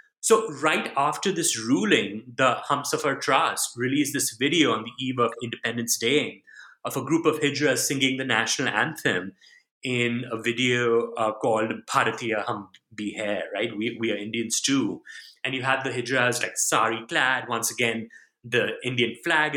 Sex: male